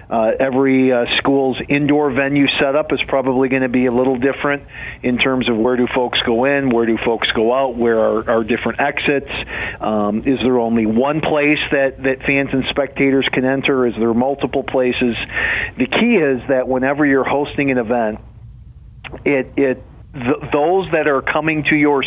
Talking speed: 185 wpm